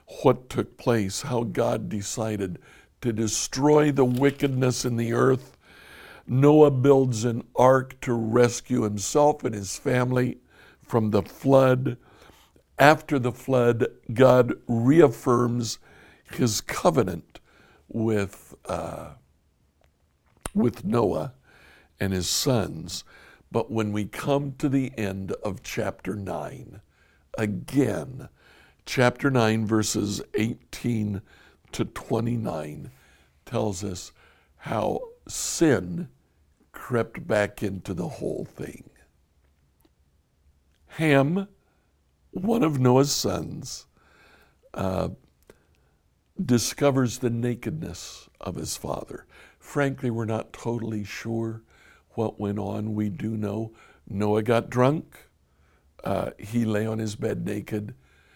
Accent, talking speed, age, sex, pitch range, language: American, 100 wpm, 60-79, male, 95-125 Hz, English